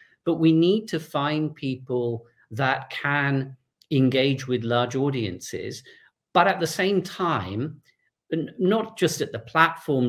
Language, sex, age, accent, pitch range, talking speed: Italian, male, 40-59, British, 125-165 Hz, 130 wpm